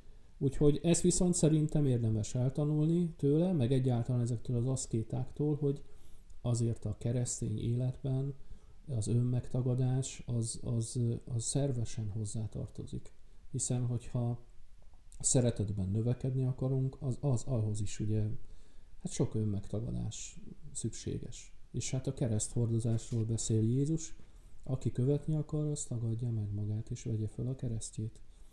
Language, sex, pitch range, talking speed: Hungarian, male, 110-135 Hz, 120 wpm